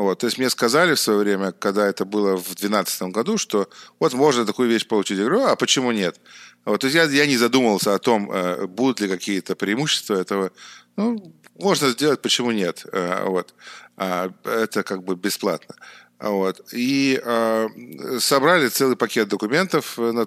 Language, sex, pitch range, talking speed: Russian, male, 95-120 Hz, 155 wpm